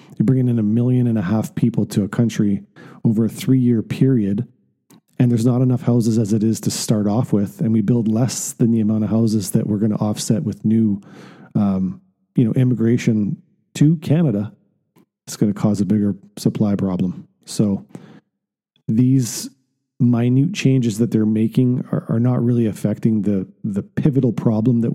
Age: 40-59